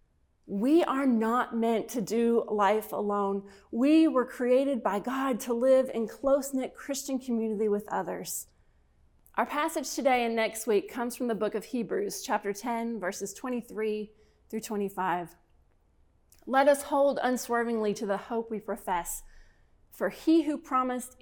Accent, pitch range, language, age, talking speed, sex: American, 205-260 Hz, English, 30-49, 145 wpm, female